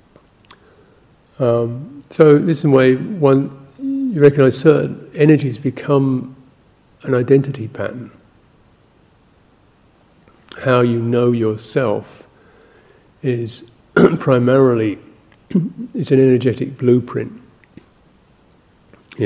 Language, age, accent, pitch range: English, 50-69, British, 110-130 Hz